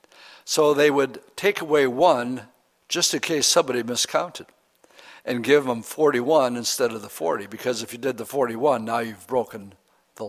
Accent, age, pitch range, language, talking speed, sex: American, 60-79, 120-145 Hz, English, 170 wpm, male